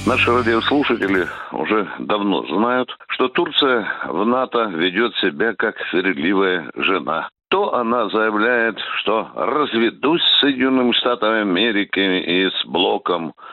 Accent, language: native, Russian